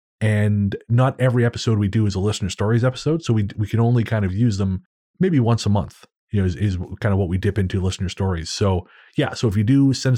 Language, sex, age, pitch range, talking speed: English, male, 30-49, 95-120 Hz, 255 wpm